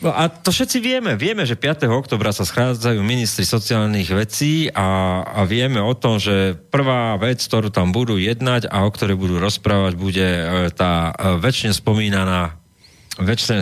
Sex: male